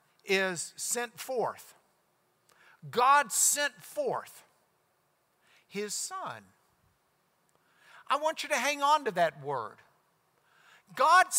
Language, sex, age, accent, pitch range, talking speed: English, male, 60-79, American, 175-285 Hz, 95 wpm